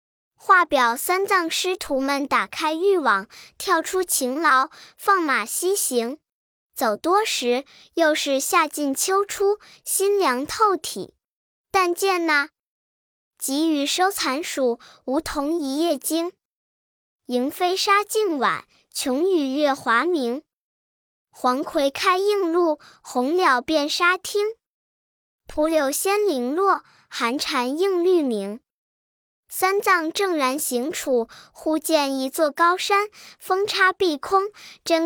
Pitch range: 270-375 Hz